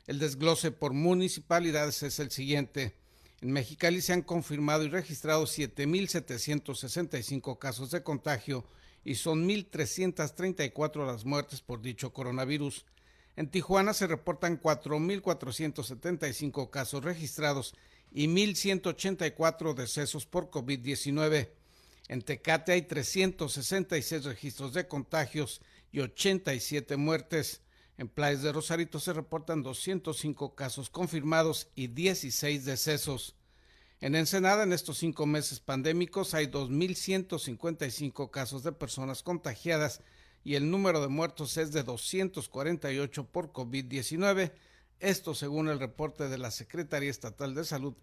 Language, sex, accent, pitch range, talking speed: Spanish, male, Mexican, 135-170 Hz, 115 wpm